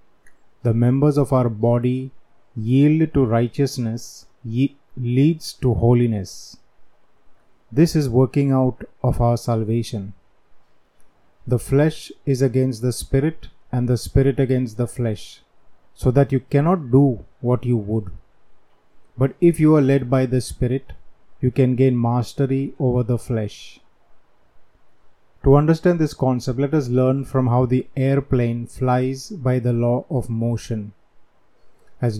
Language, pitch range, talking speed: Hindi, 115-140 Hz, 130 wpm